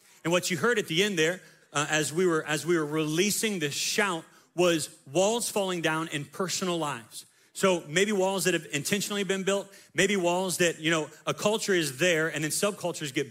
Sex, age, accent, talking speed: male, 30-49, American, 210 wpm